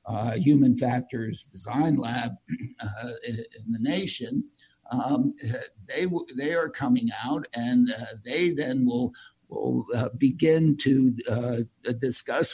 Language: English